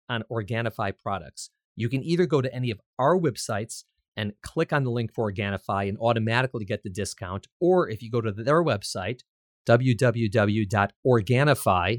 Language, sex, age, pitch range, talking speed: English, male, 40-59, 100-135 Hz, 160 wpm